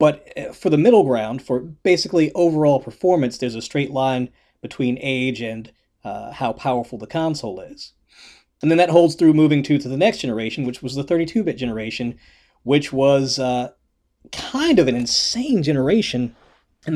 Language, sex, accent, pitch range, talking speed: English, male, American, 125-165 Hz, 165 wpm